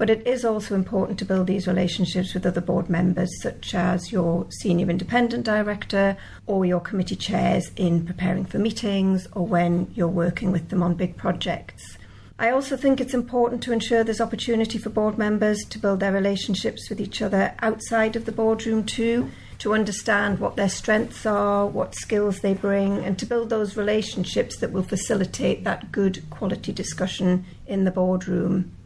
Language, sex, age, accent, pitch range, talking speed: English, female, 50-69, British, 185-225 Hz, 175 wpm